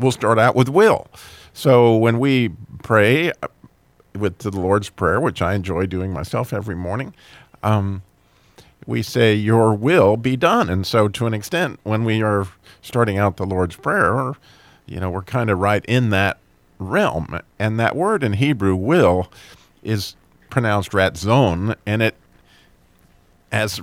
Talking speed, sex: 155 wpm, male